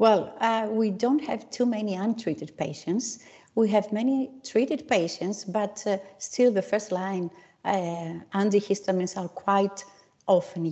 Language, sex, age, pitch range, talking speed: English, female, 60-79, 170-220 Hz, 135 wpm